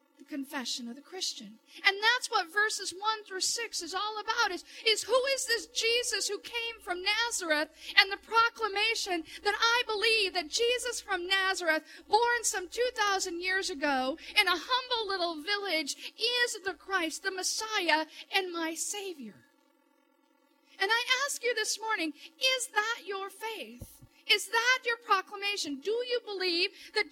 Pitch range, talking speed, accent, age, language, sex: 290-435 Hz, 155 wpm, American, 50-69, English, female